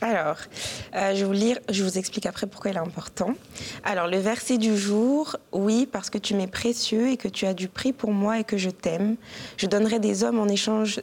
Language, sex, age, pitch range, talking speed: French, female, 20-39, 195-220 Hz, 235 wpm